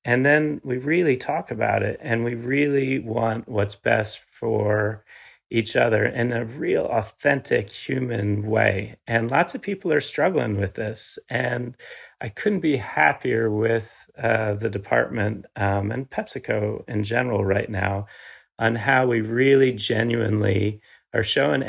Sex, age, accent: male, 40-59, American